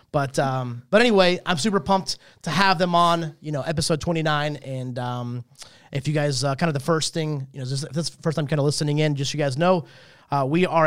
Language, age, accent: English, 30-49, American